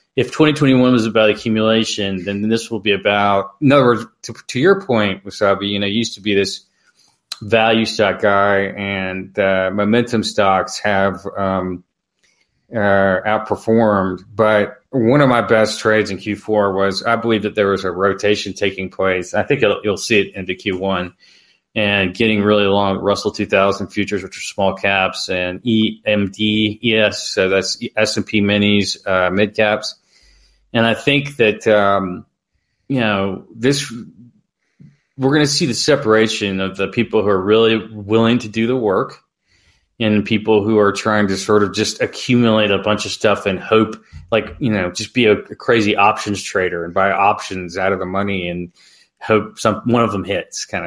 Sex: male